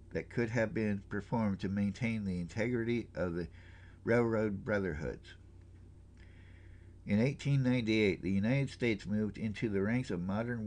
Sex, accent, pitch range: male, American, 90-120 Hz